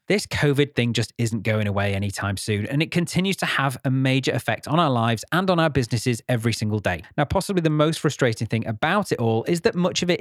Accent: British